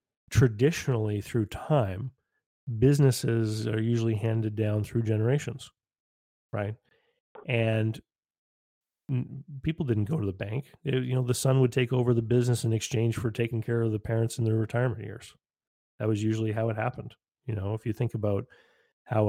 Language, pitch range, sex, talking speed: English, 105-120 Hz, male, 170 wpm